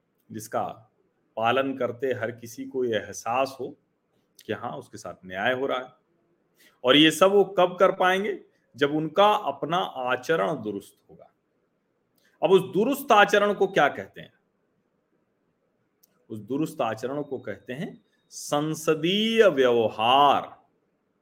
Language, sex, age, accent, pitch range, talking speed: Hindi, male, 40-59, native, 110-180 Hz, 130 wpm